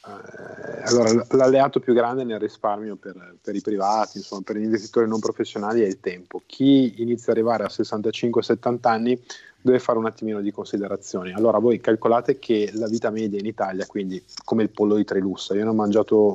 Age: 20-39